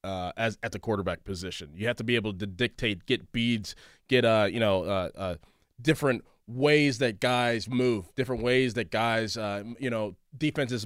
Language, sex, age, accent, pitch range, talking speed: English, male, 20-39, American, 105-130 Hz, 180 wpm